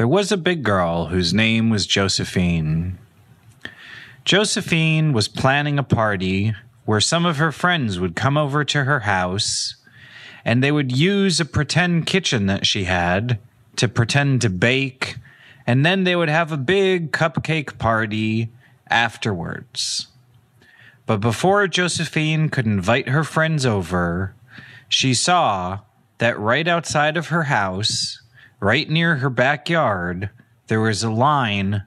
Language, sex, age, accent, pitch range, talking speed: English, male, 30-49, American, 110-155 Hz, 135 wpm